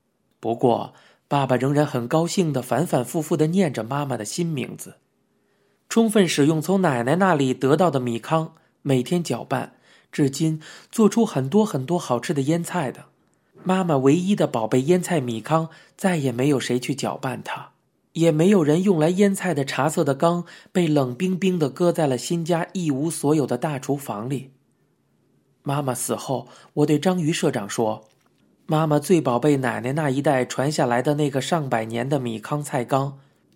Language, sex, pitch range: Chinese, male, 130-175 Hz